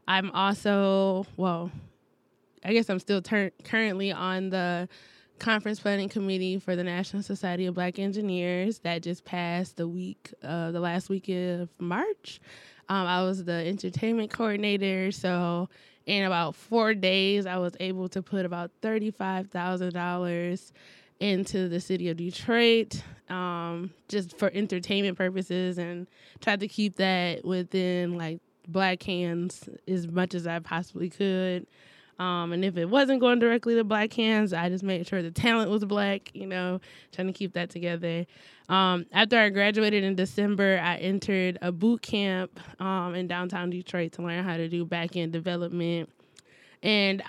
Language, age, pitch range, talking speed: English, 20-39, 175-200 Hz, 155 wpm